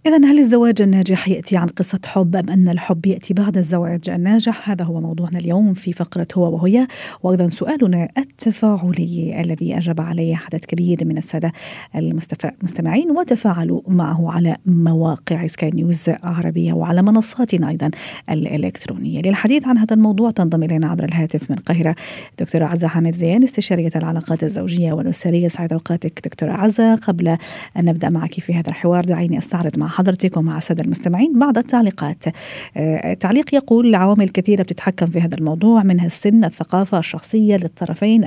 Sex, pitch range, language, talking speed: female, 165-200 Hz, Arabic, 150 wpm